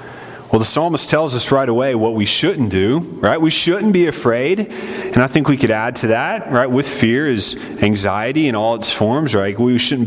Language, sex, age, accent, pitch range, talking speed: English, male, 30-49, American, 115-165 Hz, 215 wpm